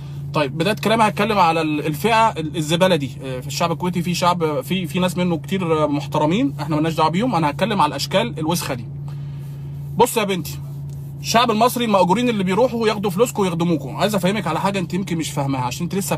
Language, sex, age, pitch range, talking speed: Arabic, male, 20-39, 145-195 Hz, 190 wpm